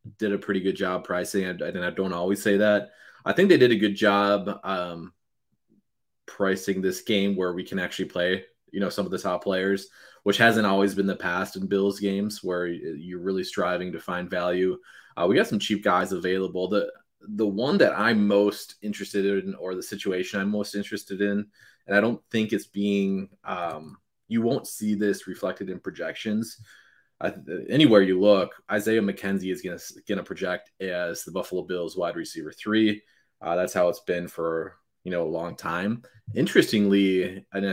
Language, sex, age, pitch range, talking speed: English, male, 20-39, 95-105 Hz, 190 wpm